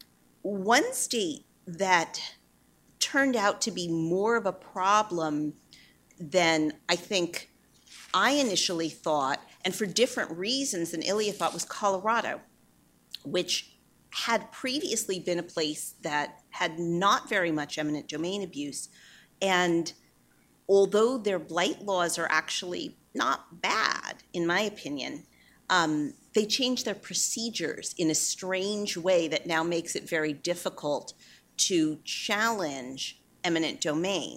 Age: 40-59